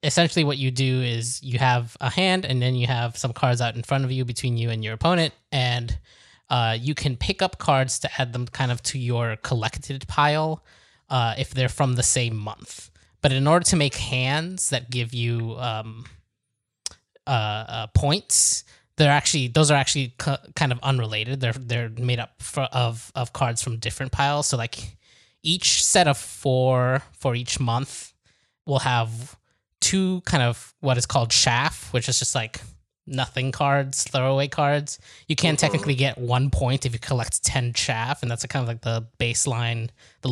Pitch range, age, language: 120-145 Hz, 10-29, English